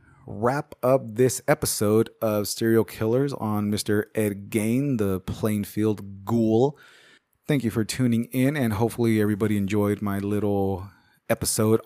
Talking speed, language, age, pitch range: 130 wpm, English, 30-49, 100-120 Hz